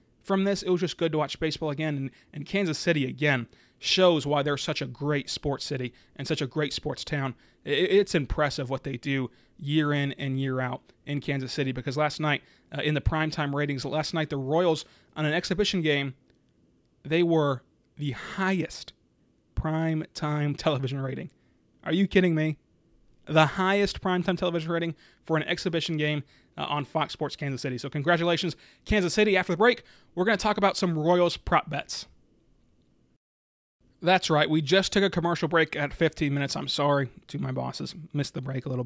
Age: 30-49